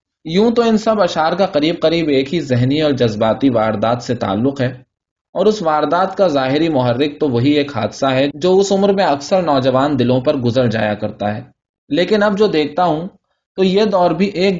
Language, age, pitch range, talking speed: Urdu, 20-39, 125-175 Hz, 205 wpm